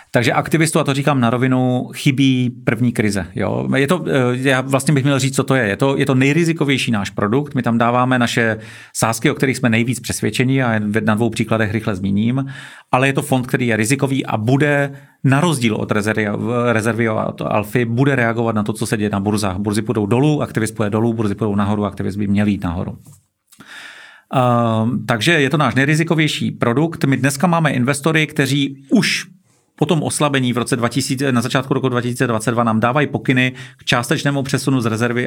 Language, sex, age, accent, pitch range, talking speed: Czech, male, 40-59, native, 110-135 Hz, 190 wpm